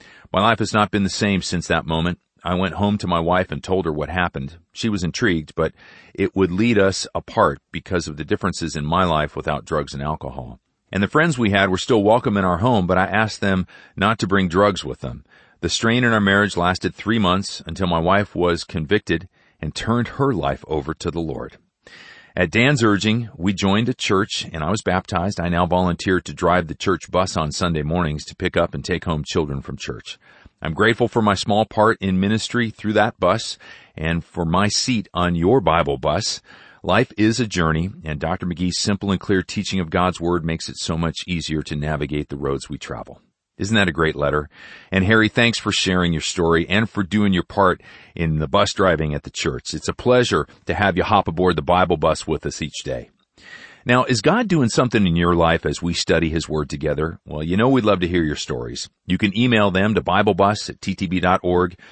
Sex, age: male, 40-59